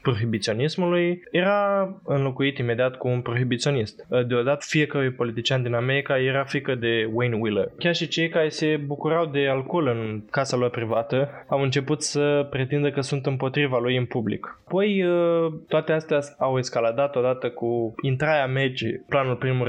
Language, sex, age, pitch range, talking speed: Romanian, male, 20-39, 120-150 Hz, 150 wpm